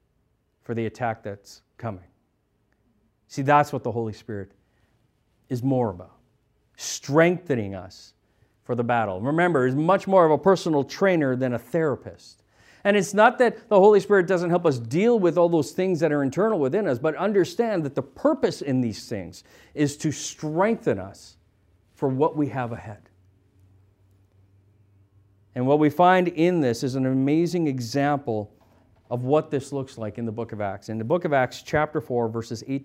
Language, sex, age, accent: English, male, 50-69, American